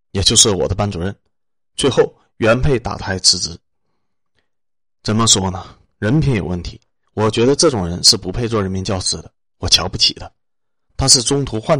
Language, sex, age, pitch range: Chinese, male, 30-49, 95-120 Hz